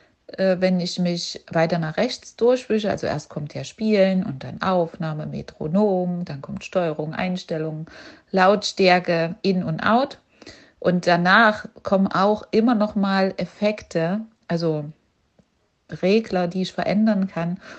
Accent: German